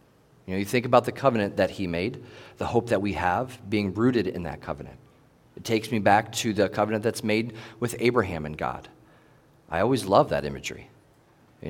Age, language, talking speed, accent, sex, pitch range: 40-59, English, 200 wpm, American, male, 95-120 Hz